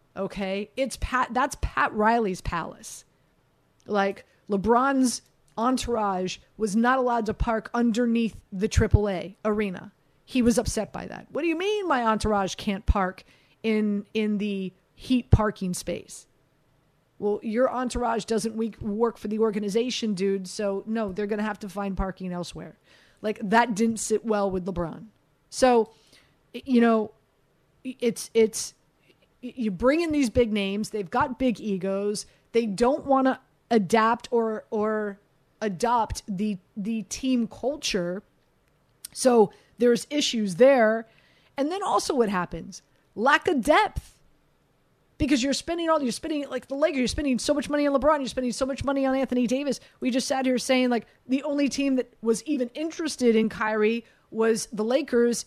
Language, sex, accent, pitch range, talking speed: English, female, American, 205-255 Hz, 160 wpm